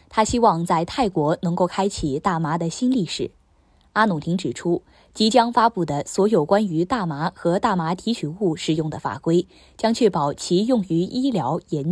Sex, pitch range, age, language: female, 155-210 Hz, 20-39, Chinese